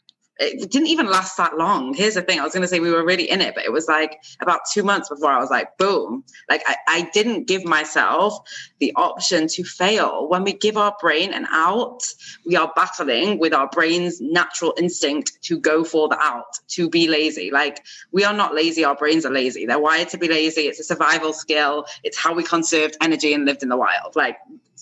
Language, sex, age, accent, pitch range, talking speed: English, female, 20-39, British, 155-205 Hz, 220 wpm